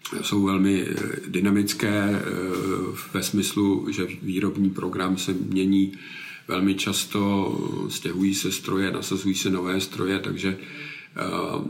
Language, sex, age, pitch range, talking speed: Czech, male, 50-69, 95-100 Hz, 105 wpm